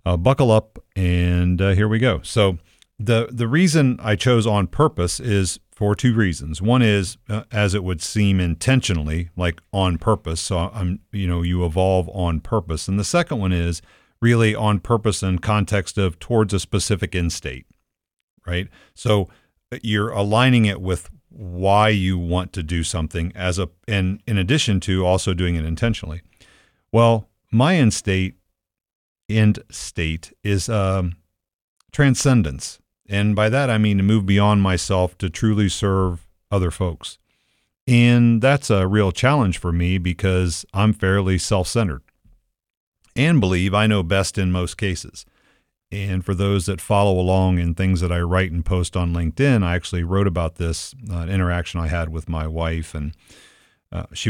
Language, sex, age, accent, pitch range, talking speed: English, male, 50-69, American, 90-110 Hz, 165 wpm